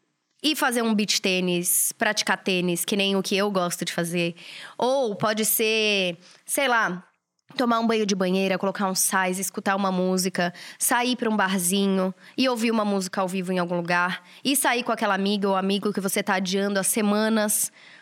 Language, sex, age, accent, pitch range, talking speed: Portuguese, female, 20-39, Brazilian, 190-225 Hz, 190 wpm